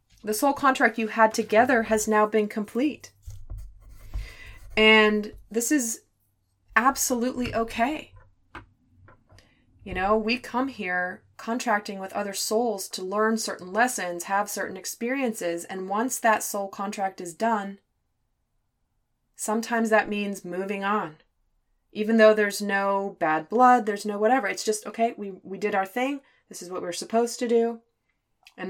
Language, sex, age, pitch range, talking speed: English, female, 20-39, 165-220 Hz, 140 wpm